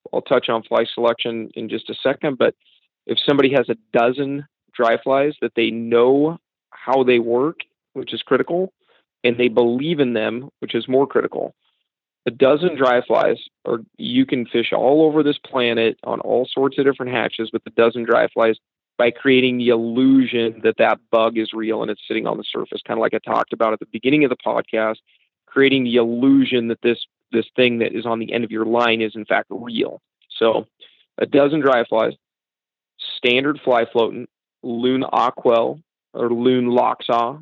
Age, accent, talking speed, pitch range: 40-59, American, 190 wpm, 115-135 Hz